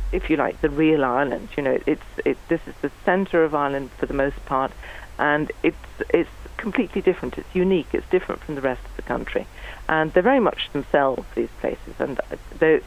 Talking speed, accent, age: 205 wpm, British, 40-59